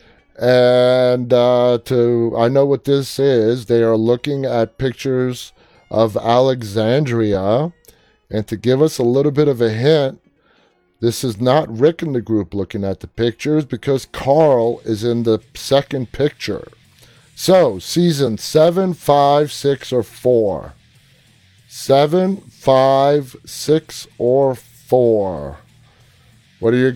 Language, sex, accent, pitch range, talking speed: English, male, American, 110-130 Hz, 130 wpm